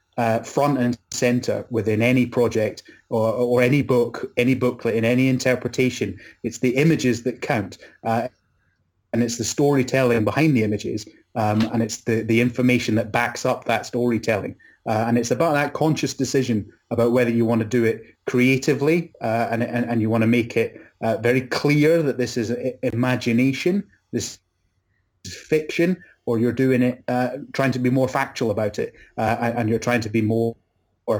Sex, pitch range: male, 115-130 Hz